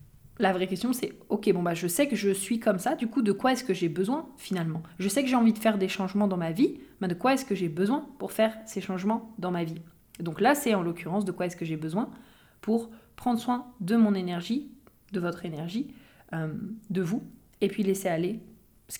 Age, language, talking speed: 20-39, French, 245 wpm